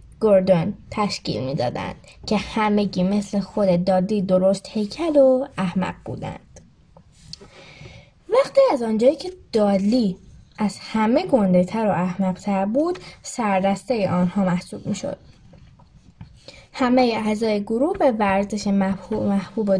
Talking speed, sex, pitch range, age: 115 wpm, female, 185-250 Hz, 10-29